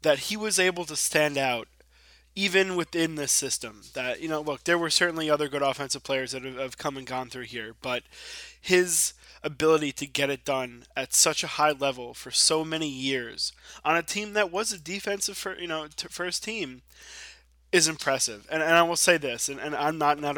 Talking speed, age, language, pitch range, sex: 210 wpm, 20-39, English, 135-175 Hz, male